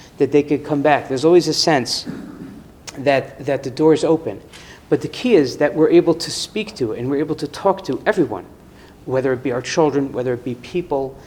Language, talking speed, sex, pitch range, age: English, 220 wpm, male, 120-160 Hz, 40-59